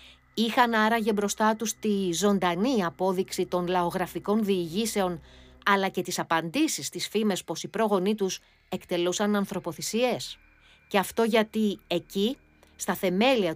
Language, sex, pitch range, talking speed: Greek, female, 180-245 Hz, 125 wpm